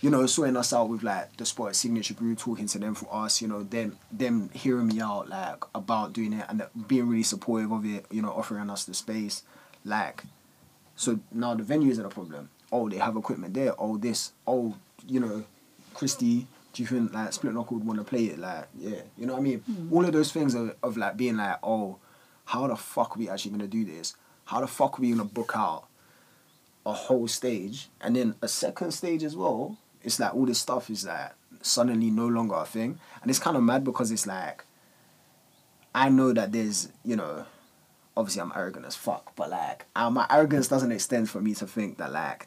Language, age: English, 20-39